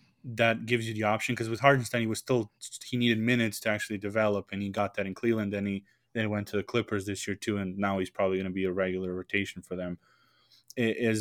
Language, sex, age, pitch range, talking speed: English, male, 20-39, 100-115 Hz, 255 wpm